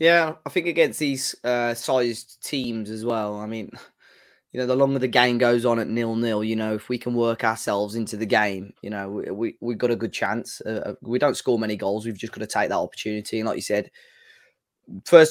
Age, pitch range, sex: 20-39, 110-125 Hz, male